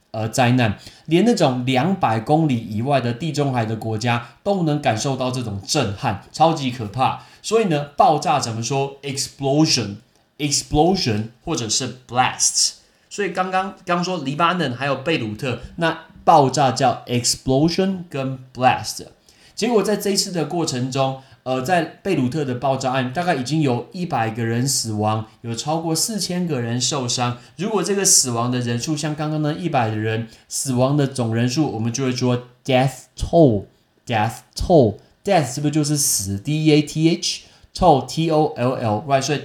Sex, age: male, 20-39